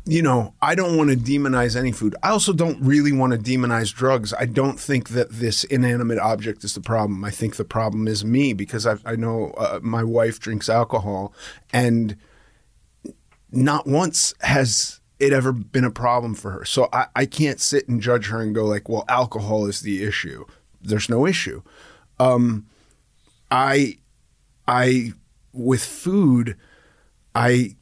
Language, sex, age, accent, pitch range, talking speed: English, male, 30-49, American, 110-130 Hz, 165 wpm